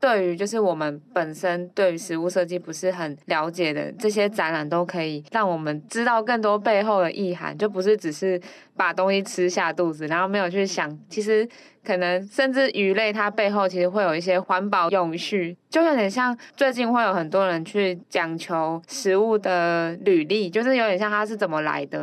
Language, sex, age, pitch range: Chinese, female, 20-39, 175-215 Hz